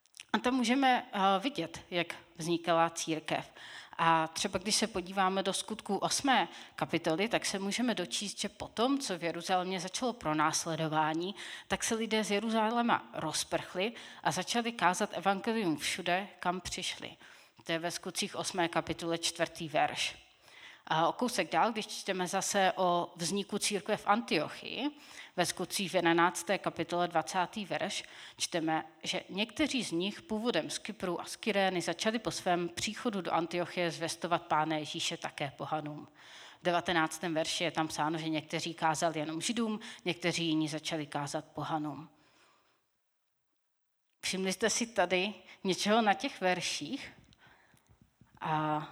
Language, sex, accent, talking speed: Czech, female, native, 135 wpm